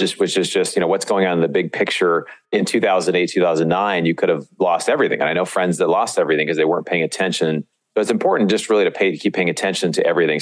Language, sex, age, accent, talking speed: English, male, 30-49, American, 265 wpm